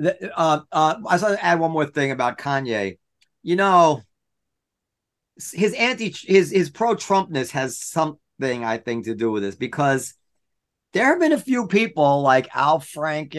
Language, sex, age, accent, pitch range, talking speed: English, male, 40-59, American, 135-185 Hz, 165 wpm